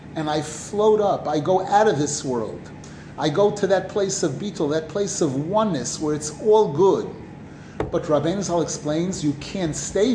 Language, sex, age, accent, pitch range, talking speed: English, male, 30-49, American, 155-200 Hz, 190 wpm